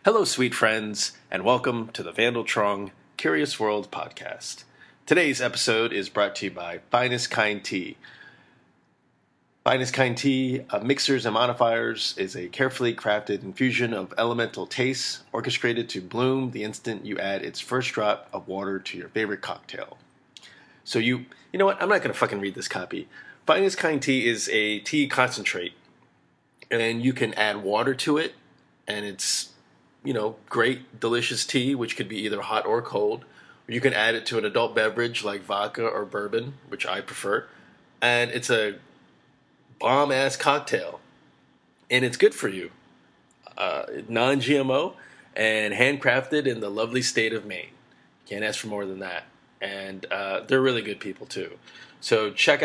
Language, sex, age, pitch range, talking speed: English, male, 30-49, 105-130 Hz, 165 wpm